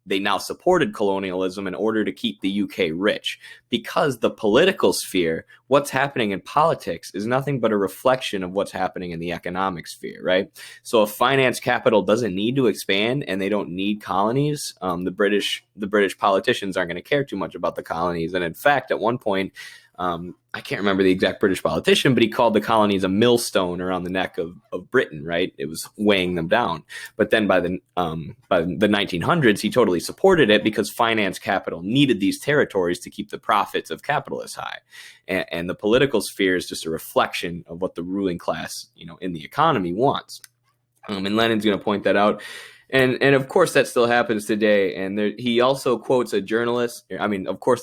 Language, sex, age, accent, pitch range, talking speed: English, male, 20-39, American, 90-115 Hz, 205 wpm